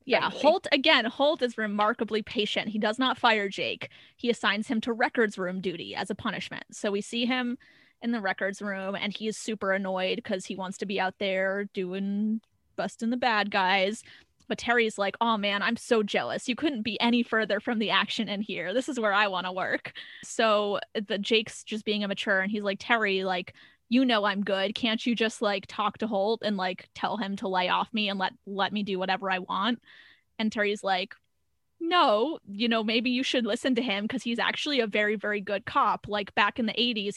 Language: English